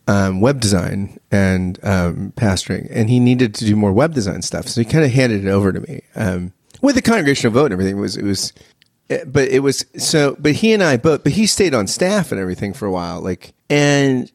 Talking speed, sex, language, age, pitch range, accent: 235 wpm, male, English, 30-49, 100-135 Hz, American